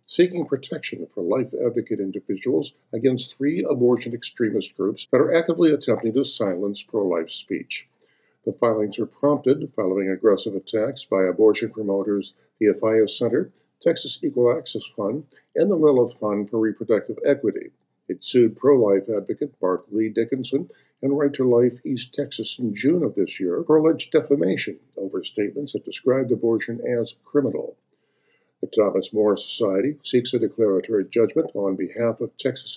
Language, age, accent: English, 50-69, American